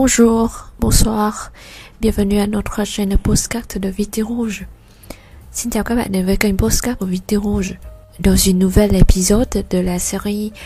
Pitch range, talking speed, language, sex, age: 185-225 Hz, 160 wpm, Vietnamese, female, 20-39